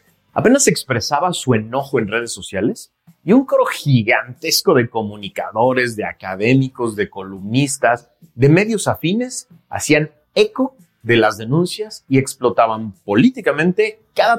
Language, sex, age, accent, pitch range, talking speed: Spanish, male, 40-59, Mexican, 115-170 Hz, 120 wpm